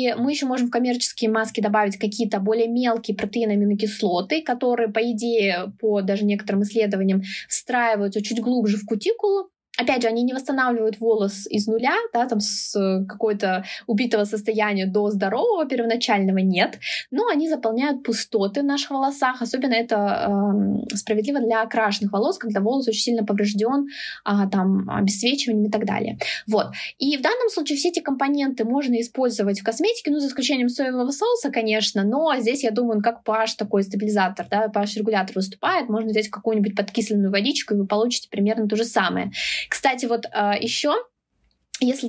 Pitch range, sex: 210-250 Hz, female